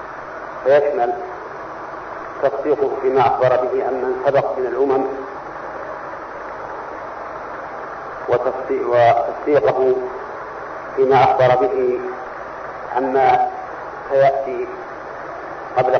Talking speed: 65 wpm